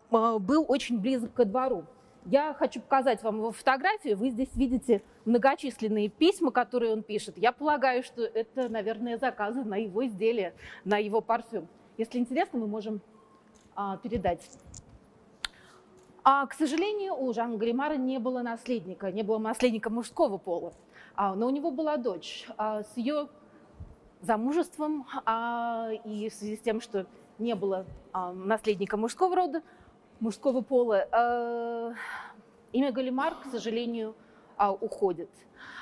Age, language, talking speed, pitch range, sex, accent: 30-49, Russian, 125 wpm, 215-270 Hz, female, native